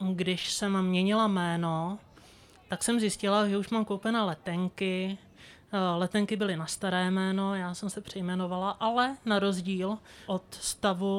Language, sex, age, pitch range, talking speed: Czech, male, 20-39, 185-200 Hz, 140 wpm